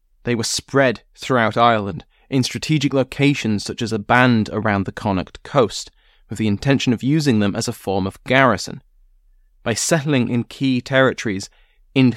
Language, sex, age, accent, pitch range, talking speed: English, male, 20-39, British, 110-145 Hz, 165 wpm